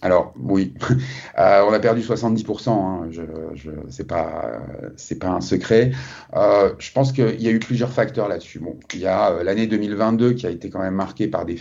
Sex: male